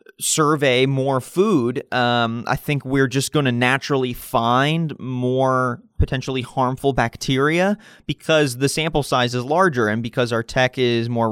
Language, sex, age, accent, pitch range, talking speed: English, male, 20-39, American, 120-145 Hz, 155 wpm